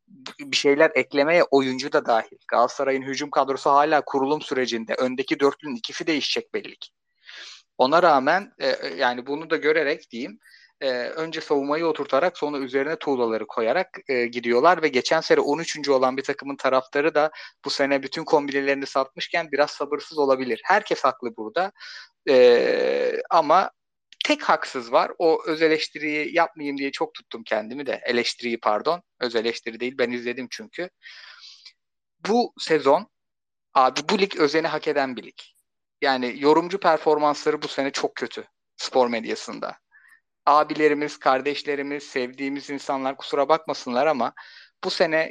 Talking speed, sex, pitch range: 135 wpm, male, 135-160 Hz